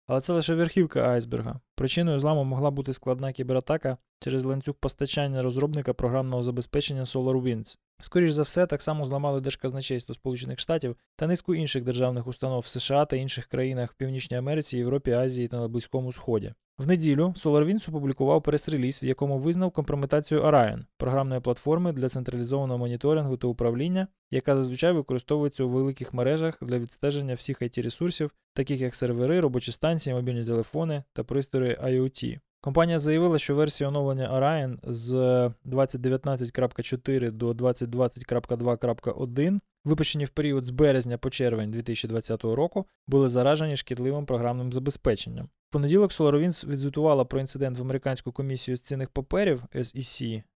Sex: male